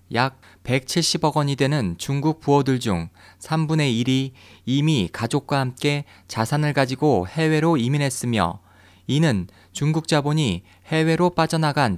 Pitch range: 100-160 Hz